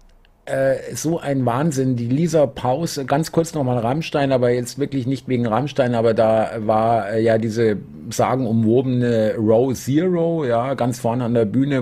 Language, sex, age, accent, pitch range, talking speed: German, male, 50-69, German, 115-140 Hz, 160 wpm